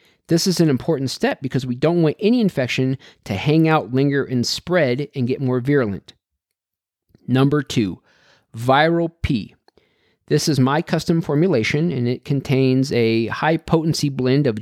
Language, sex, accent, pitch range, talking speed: English, male, American, 120-160 Hz, 150 wpm